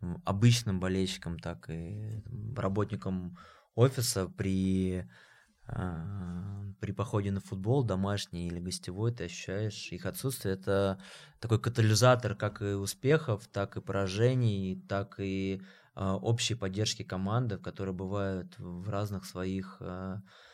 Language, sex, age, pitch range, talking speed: Russian, male, 20-39, 95-110 Hz, 110 wpm